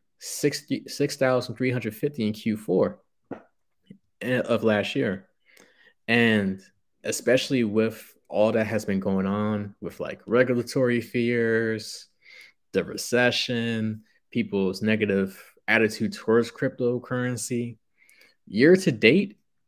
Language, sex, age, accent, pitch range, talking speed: English, male, 20-39, American, 105-125 Hz, 90 wpm